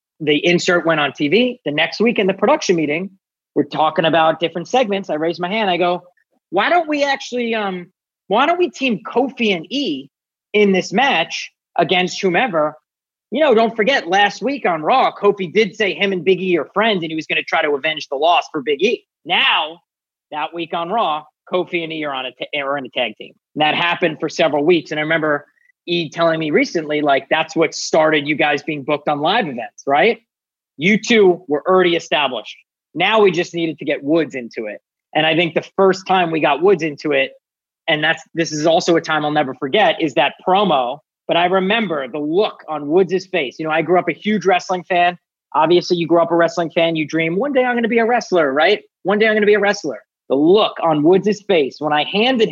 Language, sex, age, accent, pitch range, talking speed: English, male, 30-49, American, 155-205 Hz, 230 wpm